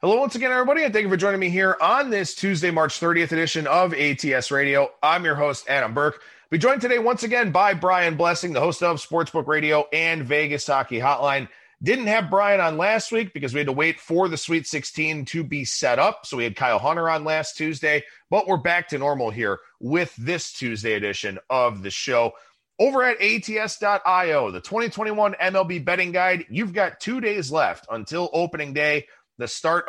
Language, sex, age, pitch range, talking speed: English, male, 30-49, 140-180 Hz, 200 wpm